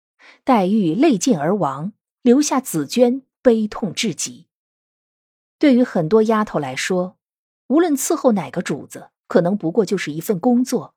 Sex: female